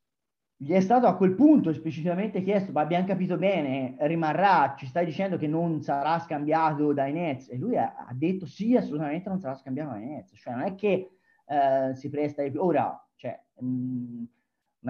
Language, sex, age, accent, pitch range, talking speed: Italian, male, 30-49, native, 130-175 Hz, 175 wpm